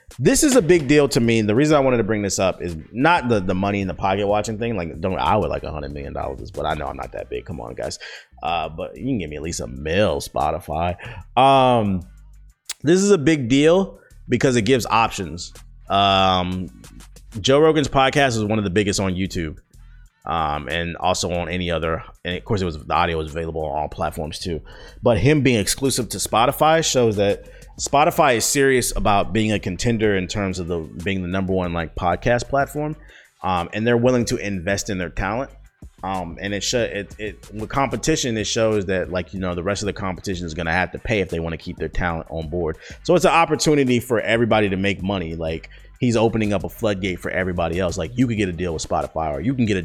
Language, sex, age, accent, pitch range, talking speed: English, male, 30-49, American, 85-120 Hz, 235 wpm